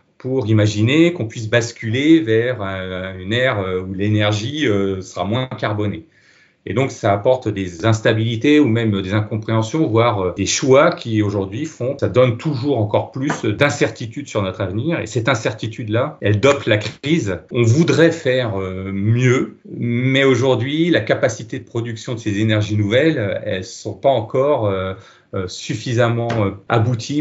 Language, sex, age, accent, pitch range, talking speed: French, male, 40-59, French, 105-135 Hz, 150 wpm